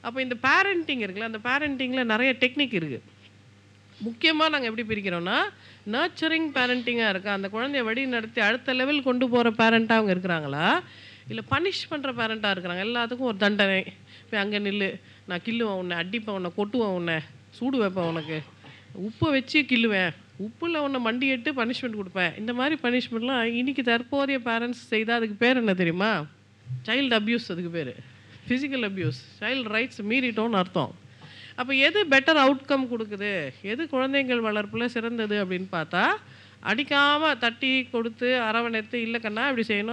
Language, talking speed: Tamil, 155 wpm